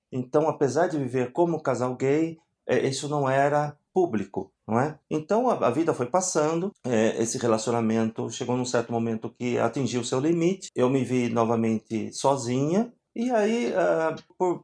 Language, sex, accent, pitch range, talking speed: Portuguese, male, Brazilian, 125-165 Hz, 150 wpm